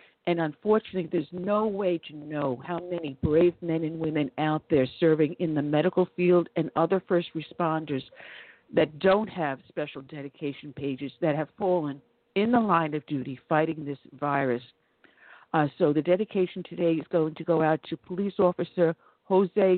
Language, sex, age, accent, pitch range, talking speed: English, female, 50-69, American, 155-190 Hz, 165 wpm